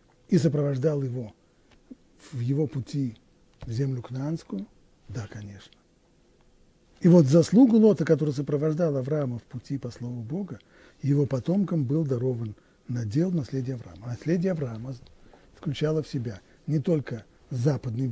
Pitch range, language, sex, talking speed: 120-175 Hz, Russian, male, 135 wpm